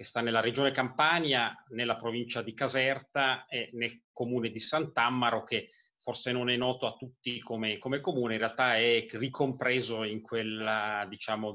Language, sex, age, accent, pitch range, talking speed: Italian, male, 30-49, native, 110-130 Hz, 160 wpm